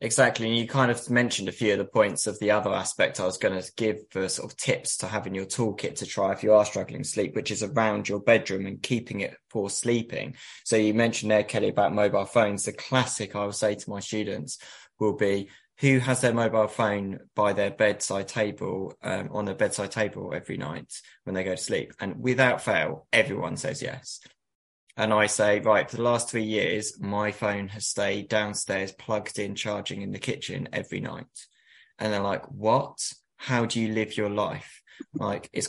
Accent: British